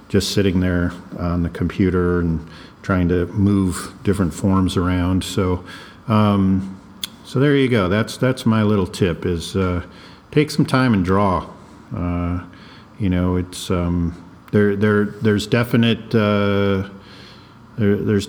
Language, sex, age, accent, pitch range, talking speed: English, male, 50-69, American, 90-115 Hz, 140 wpm